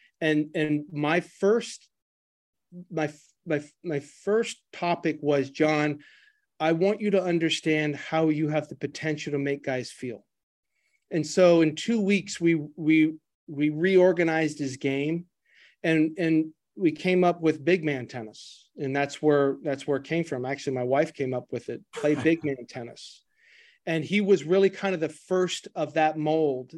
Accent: American